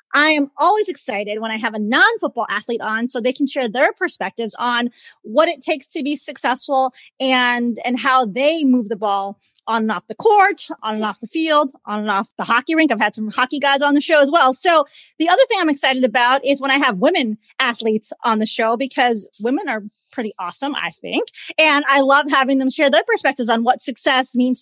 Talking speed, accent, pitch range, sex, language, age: 225 wpm, American, 230-305 Hz, female, English, 30-49